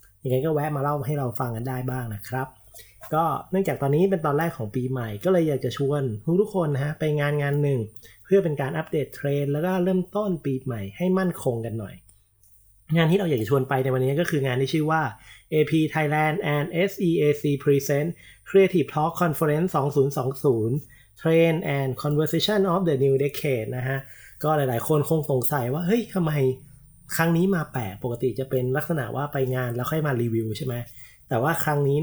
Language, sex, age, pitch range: Thai, male, 30-49, 125-155 Hz